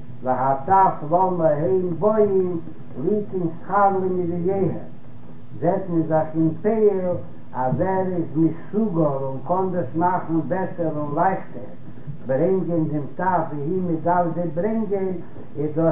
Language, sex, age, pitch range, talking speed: Hebrew, male, 60-79, 155-190 Hz, 85 wpm